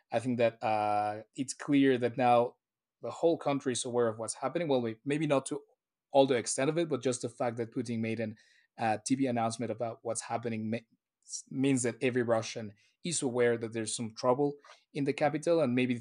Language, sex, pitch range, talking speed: English, male, 115-135 Hz, 210 wpm